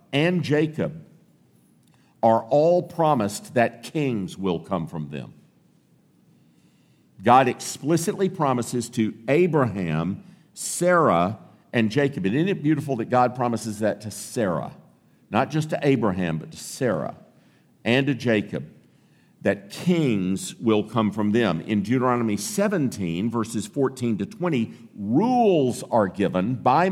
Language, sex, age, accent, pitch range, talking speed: English, male, 50-69, American, 105-150 Hz, 125 wpm